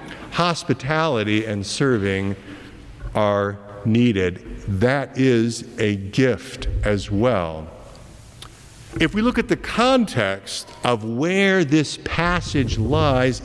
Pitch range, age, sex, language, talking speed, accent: 105-170 Hz, 50-69, male, English, 100 wpm, American